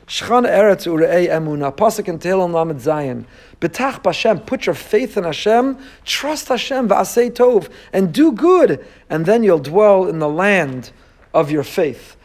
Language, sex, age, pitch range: English, male, 50-69, 165-220 Hz